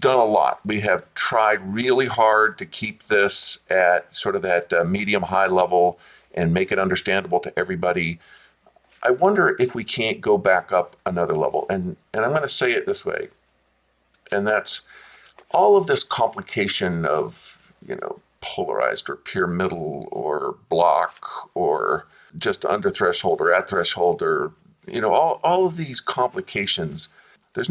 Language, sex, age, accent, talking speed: English, male, 50-69, American, 160 wpm